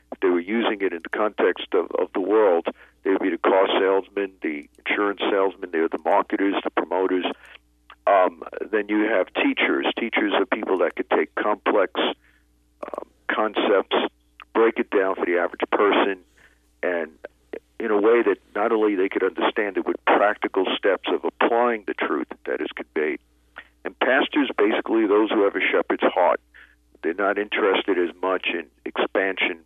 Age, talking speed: 50-69, 170 wpm